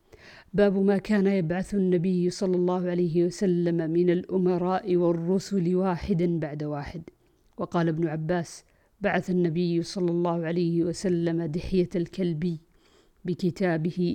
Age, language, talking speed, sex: 50-69, Arabic, 115 wpm, female